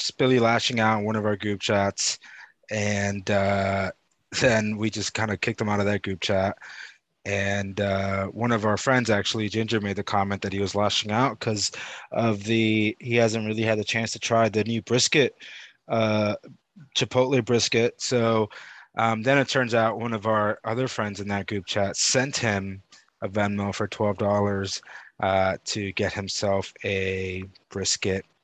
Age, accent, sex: 20-39, American, male